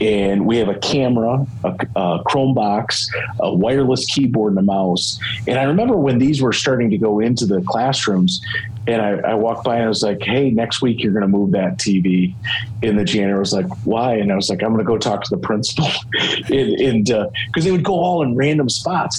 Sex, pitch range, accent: male, 105-130 Hz, American